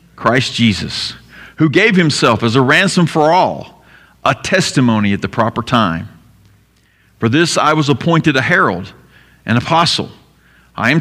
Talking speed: 145 wpm